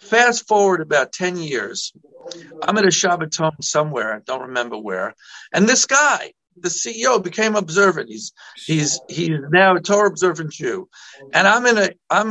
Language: English